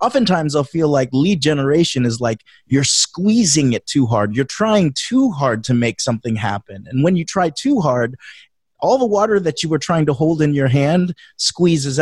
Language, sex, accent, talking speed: English, male, American, 200 wpm